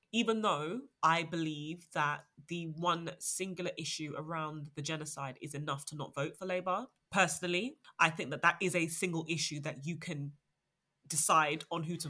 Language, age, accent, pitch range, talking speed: English, 20-39, British, 155-185 Hz, 175 wpm